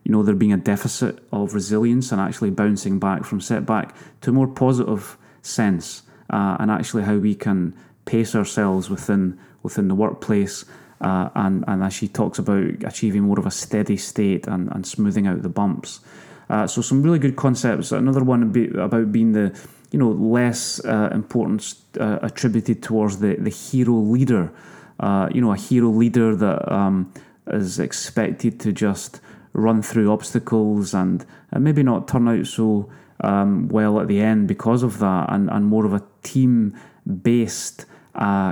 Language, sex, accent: English, male, British